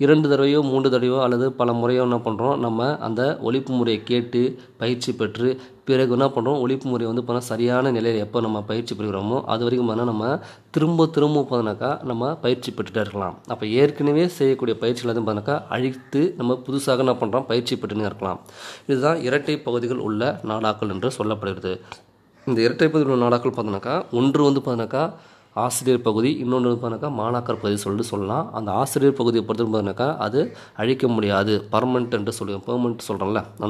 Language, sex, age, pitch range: Tamil, male, 20-39, 110-130 Hz